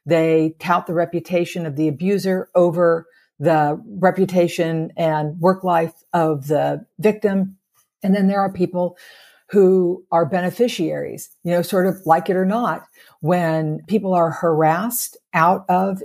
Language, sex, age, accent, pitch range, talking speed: English, female, 50-69, American, 165-200 Hz, 140 wpm